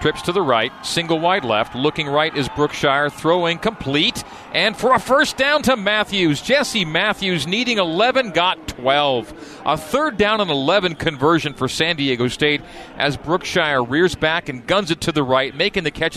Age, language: 40-59, English